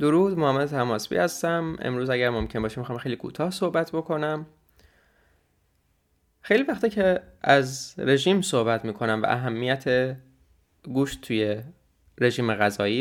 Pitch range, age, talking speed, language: 110-140 Hz, 20-39, 120 wpm, Persian